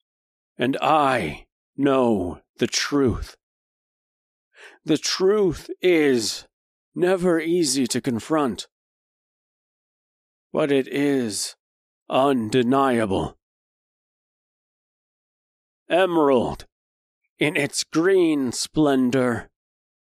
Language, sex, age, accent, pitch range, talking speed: English, male, 40-59, American, 105-140 Hz, 65 wpm